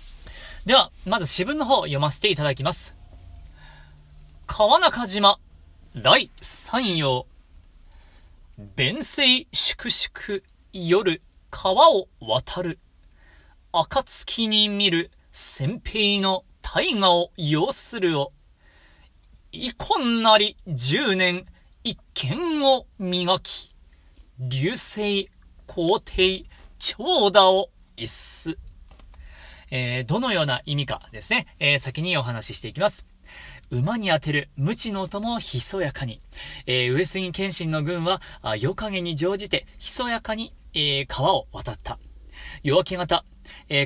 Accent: native